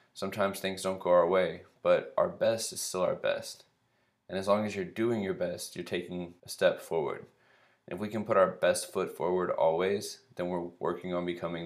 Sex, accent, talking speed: male, American, 210 wpm